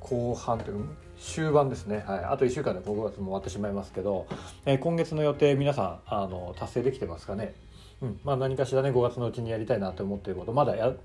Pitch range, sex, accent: 95-135 Hz, male, native